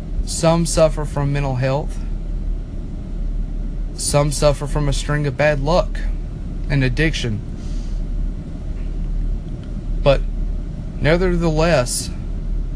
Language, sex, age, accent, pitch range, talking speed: English, male, 40-59, American, 125-150 Hz, 80 wpm